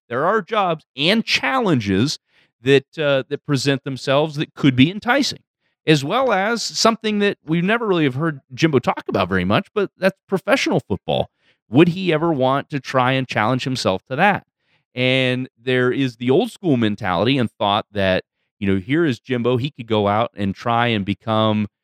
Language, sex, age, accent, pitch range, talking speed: English, male, 30-49, American, 105-155 Hz, 185 wpm